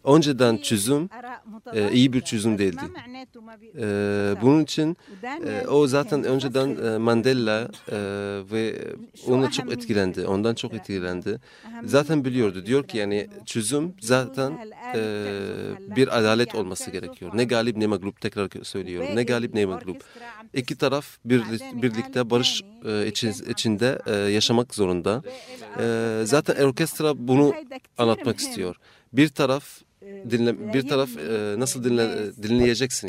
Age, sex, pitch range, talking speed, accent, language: 40-59, male, 110-140 Hz, 110 wpm, native, Turkish